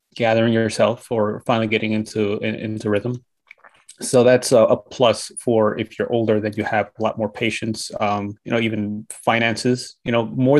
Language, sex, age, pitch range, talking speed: English, male, 20-39, 110-135 Hz, 180 wpm